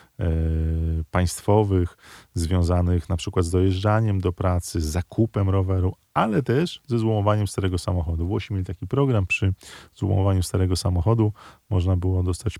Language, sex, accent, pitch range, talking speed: Polish, male, native, 90-110 Hz, 140 wpm